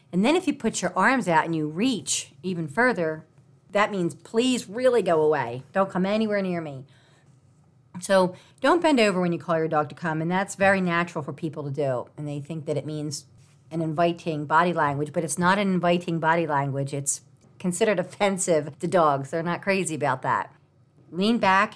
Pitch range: 150-200 Hz